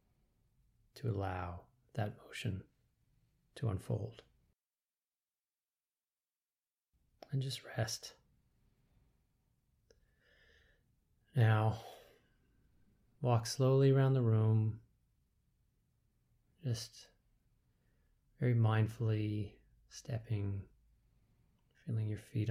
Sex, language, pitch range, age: male, English, 95-120 Hz, 30-49